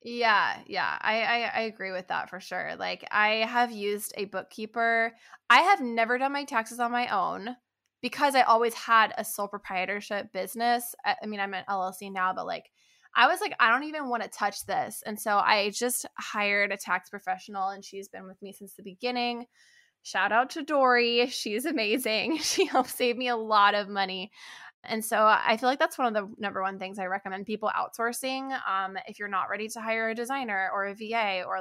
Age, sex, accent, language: 20-39, female, American, English